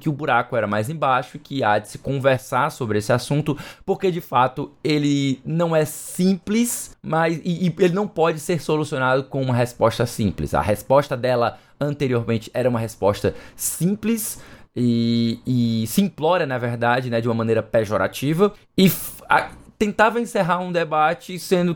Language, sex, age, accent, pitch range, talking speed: Portuguese, male, 20-39, Brazilian, 115-160 Hz, 165 wpm